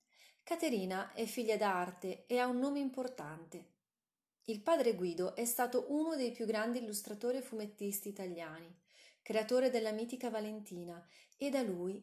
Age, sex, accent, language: 30-49, female, native, Italian